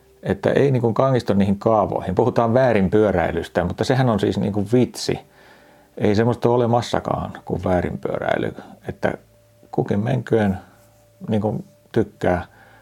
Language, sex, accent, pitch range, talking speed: Finnish, male, native, 80-105 Hz, 115 wpm